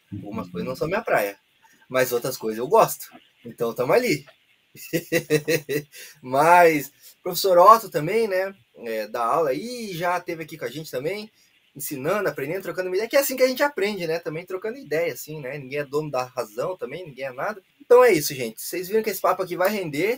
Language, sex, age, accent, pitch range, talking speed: Portuguese, male, 20-39, Brazilian, 155-245 Hz, 200 wpm